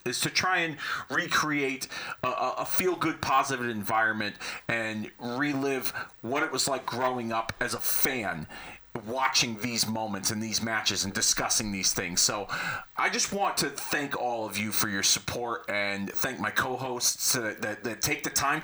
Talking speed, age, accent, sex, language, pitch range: 170 wpm, 30-49, American, male, English, 115-155 Hz